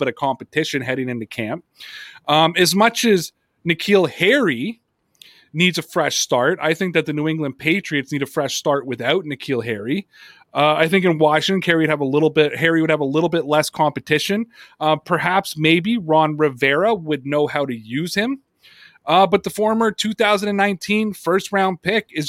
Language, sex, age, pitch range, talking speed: English, male, 30-49, 155-200 Hz, 185 wpm